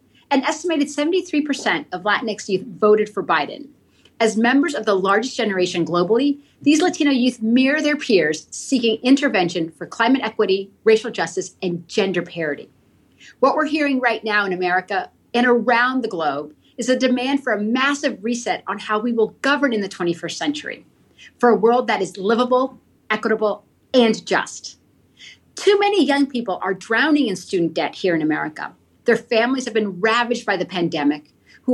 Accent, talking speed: American, 170 wpm